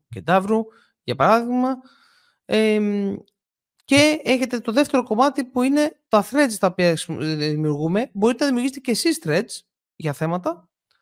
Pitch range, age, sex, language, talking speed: 150-215 Hz, 30-49, male, Greek, 130 wpm